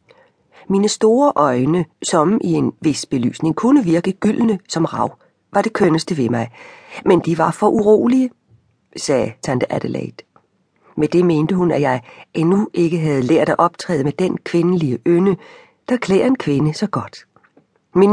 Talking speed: 160 wpm